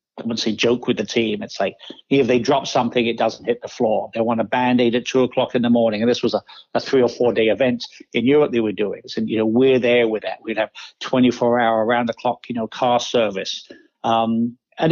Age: 60-79